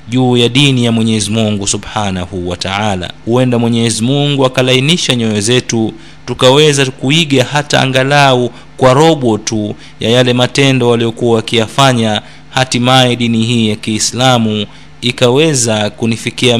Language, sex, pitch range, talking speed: Swahili, male, 105-130 Hz, 120 wpm